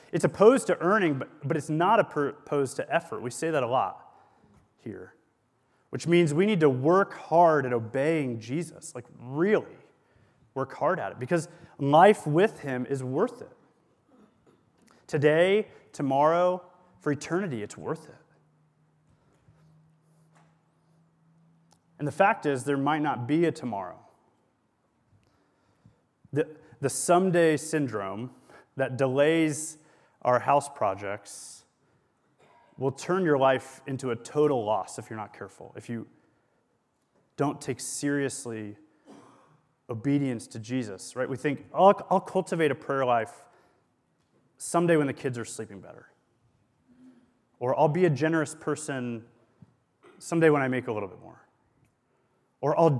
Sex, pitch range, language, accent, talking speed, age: male, 125-160 Hz, English, American, 135 wpm, 30-49